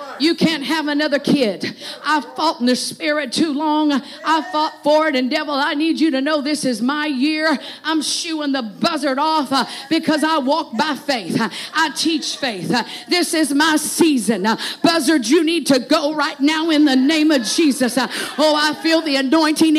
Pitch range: 275-325 Hz